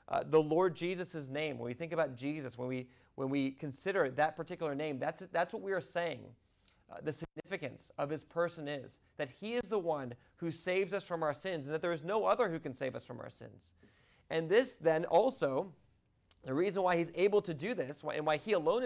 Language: English